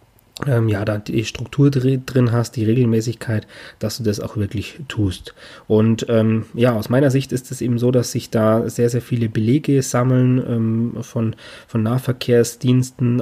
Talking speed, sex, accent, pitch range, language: 165 wpm, male, German, 110-125 Hz, German